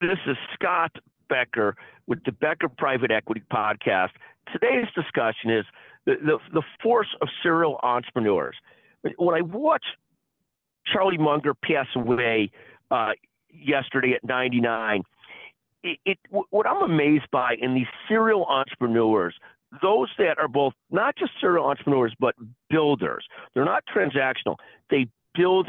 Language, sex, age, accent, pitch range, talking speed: English, male, 50-69, American, 125-155 Hz, 130 wpm